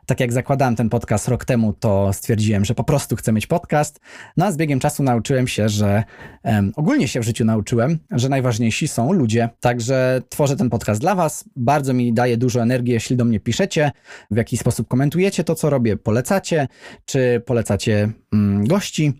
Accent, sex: native, male